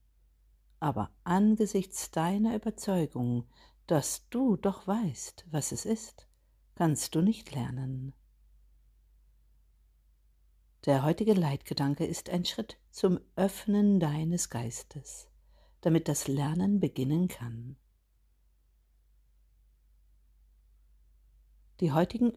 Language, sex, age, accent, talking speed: German, female, 60-79, German, 85 wpm